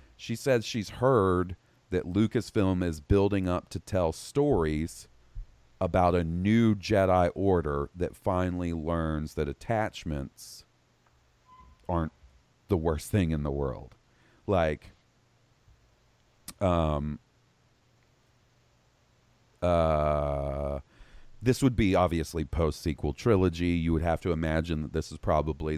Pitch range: 80-105 Hz